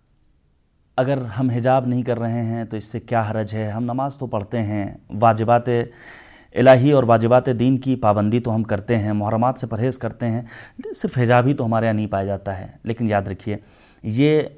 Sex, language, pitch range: male, Urdu, 105-125 Hz